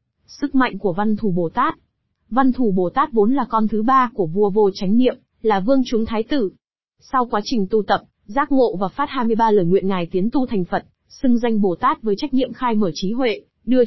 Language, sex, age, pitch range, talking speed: Vietnamese, female, 20-39, 200-255 Hz, 240 wpm